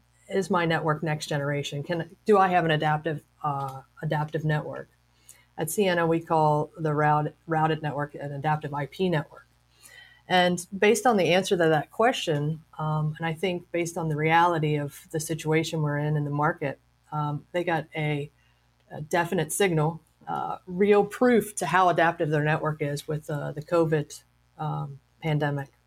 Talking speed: 165 wpm